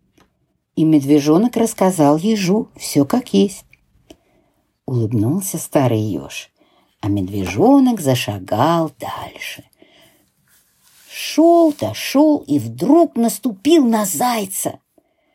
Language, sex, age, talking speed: Ukrainian, female, 50-69, 90 wpm